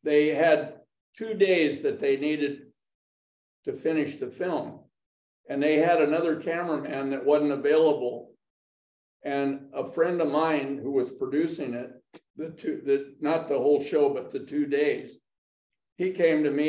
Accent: American